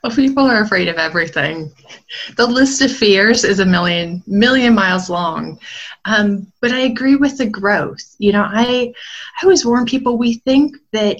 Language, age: English, 20-39